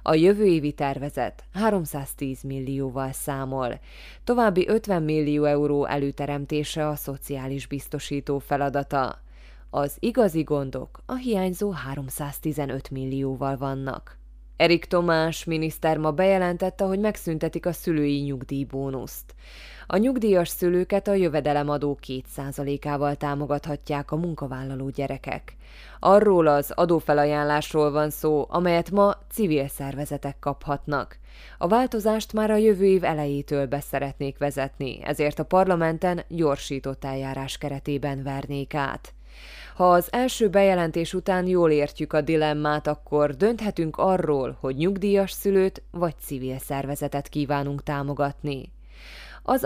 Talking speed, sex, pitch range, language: 110 wpm, female, 140-175 Hz, Hungarian